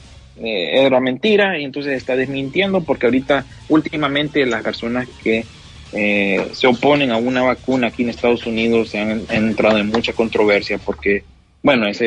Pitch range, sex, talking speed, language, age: 110-135 Hz, male, 160 wpm, Spanish, 30-49